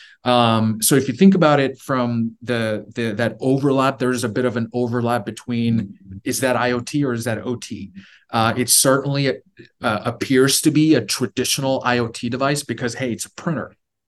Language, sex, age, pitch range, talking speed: English, male, 30-49, 110-130 Hz, 180 wpm